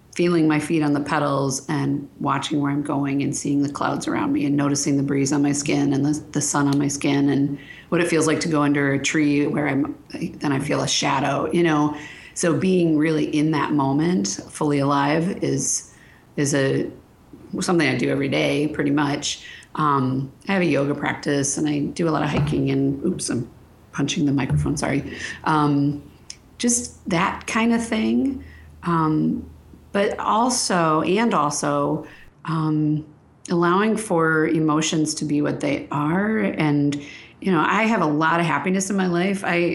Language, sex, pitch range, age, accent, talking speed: English, female, 140-165 Hz, 40-59, American, 185 wpm